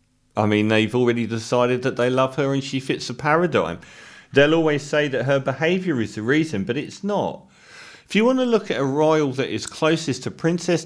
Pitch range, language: 110-155 Hz, English